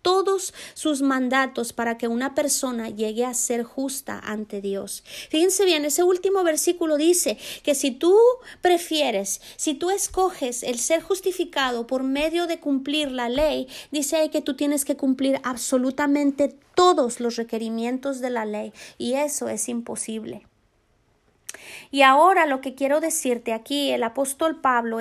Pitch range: 245-310 Hz